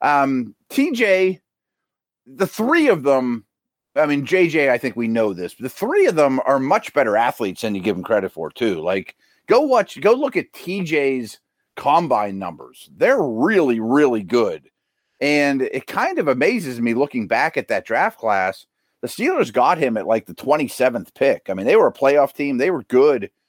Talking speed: 190 wpm